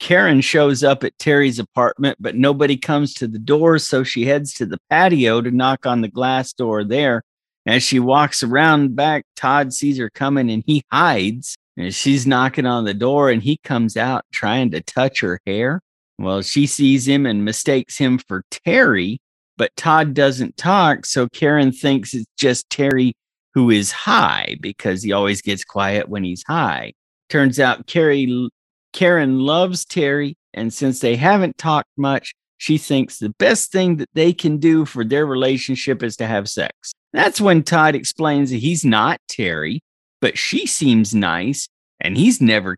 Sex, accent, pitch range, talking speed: male, American, 120-155 Hz, 175 wpm